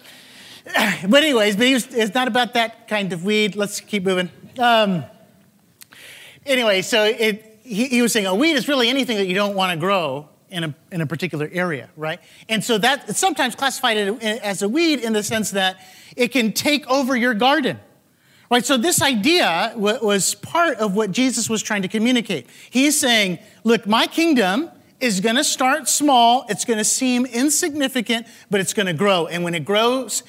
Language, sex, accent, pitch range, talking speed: English, male, American, 200-255 Hz, 180 wpm